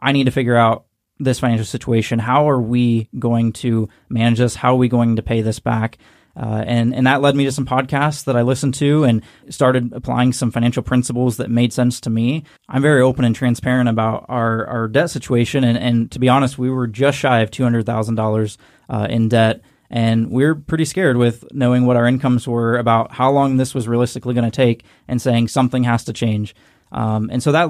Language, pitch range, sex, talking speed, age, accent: English, 115-130 Hz, male, 220 wpm, 20-39, American